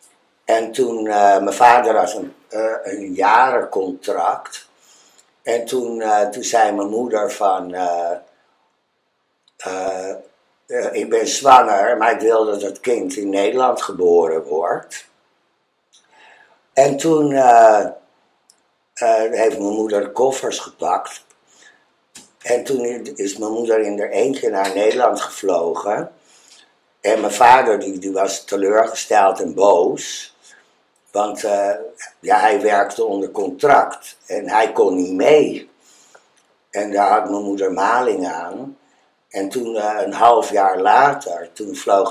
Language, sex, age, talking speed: Dutch, male, 60-79, 130 wpm